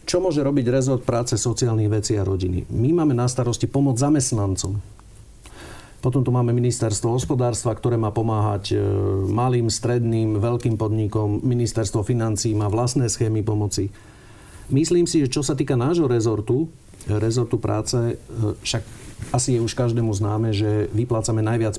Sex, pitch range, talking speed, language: male, 110-130 Hz, 145 wpm, Slovak